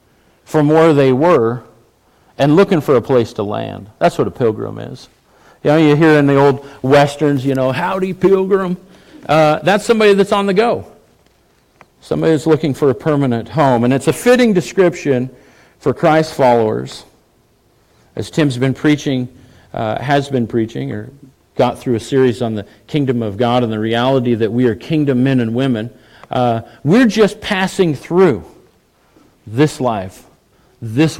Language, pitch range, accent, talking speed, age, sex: English, 125-180 Hz, American, 165 wpm, 50-69, male